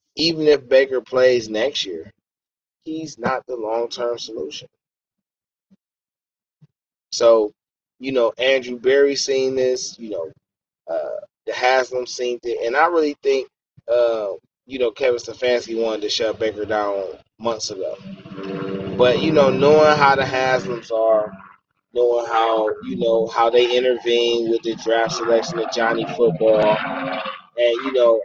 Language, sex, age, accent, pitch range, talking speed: English, male, 20-39, American, 115-150 Hz, 140 wpm